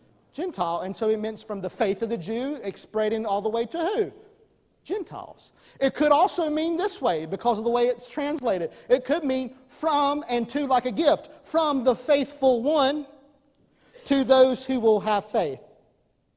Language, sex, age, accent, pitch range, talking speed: English, male, 50-69, American, 215-290 Hz, 180 wpm